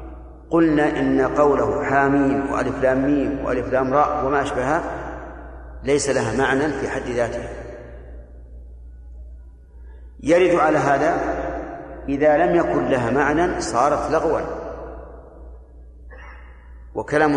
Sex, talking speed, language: male, 105 wpm, Arabic